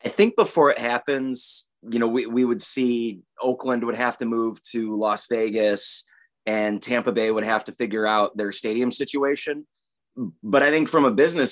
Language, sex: English, male